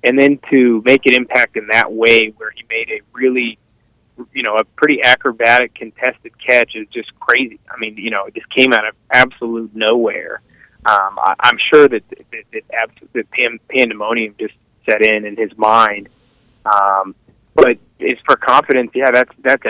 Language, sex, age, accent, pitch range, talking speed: English, male, 30-49, American, 110-125 Hz, 175 wpm